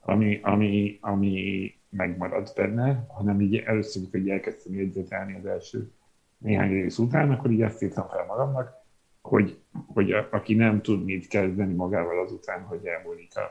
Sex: male